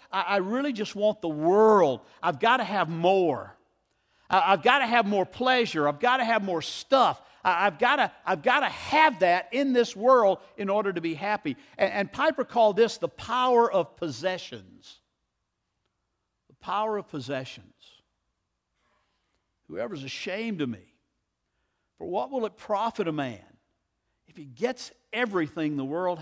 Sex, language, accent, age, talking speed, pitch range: male, English, American, 50-69, 150 wpm, 165-245 Hz